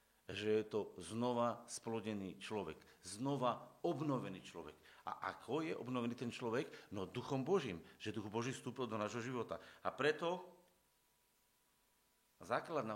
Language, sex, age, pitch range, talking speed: Slovak, male, 50-69, 100-130 Hz, 130 wpm